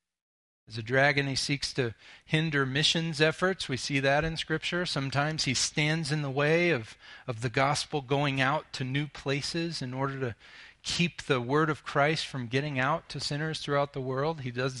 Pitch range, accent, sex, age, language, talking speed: 130-155 Hz, American, male, 40-59, English, 190 wpm